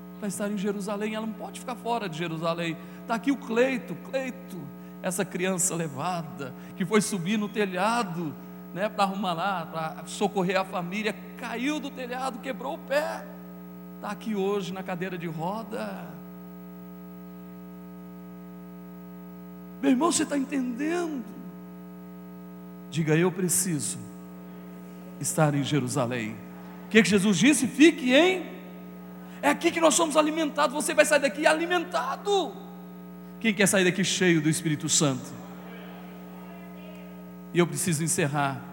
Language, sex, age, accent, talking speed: Portuguese, male, 40-59, Brazilian, 130 wpm